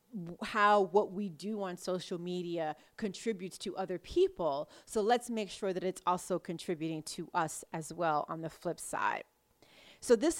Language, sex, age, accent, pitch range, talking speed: English, female, 30-49, American, 180-225 Hz, 165 wpm